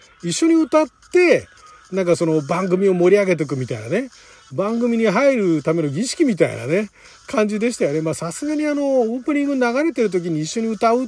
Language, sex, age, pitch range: Japanese, male, 40-59, 150-210 Hz